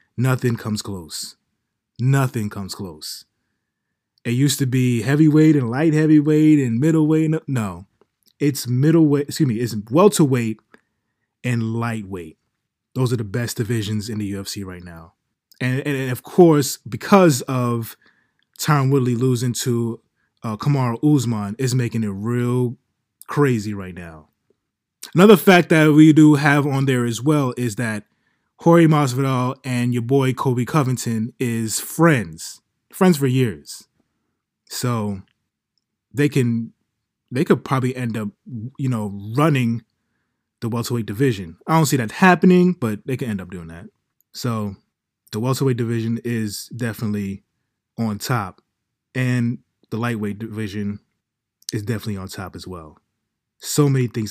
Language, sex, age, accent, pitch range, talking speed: English, male, 20-39, American, 105-135 Hz, 140 wpm